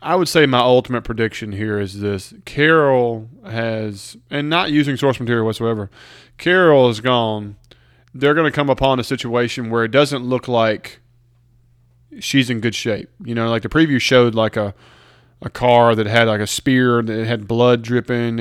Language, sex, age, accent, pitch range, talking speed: English, male, 20-39, American, 115-130 Hz, 180 wpm